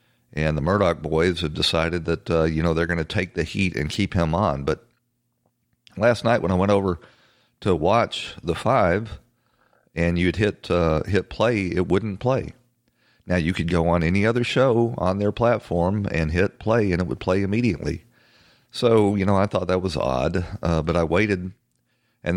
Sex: male